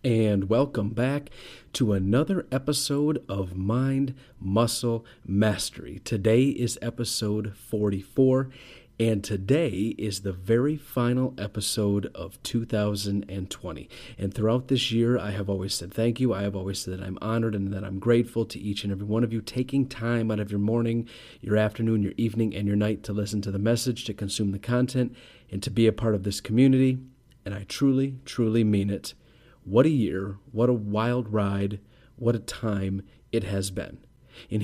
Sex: male